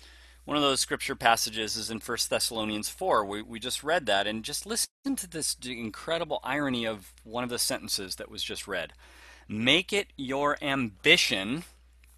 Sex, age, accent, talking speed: male, 30-49, American, 170 wpm